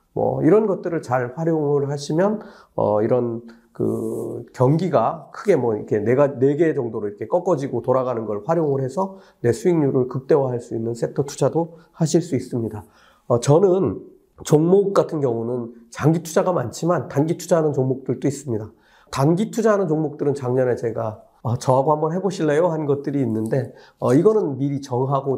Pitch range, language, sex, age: 125-165 Hz, Korean, male, 40-59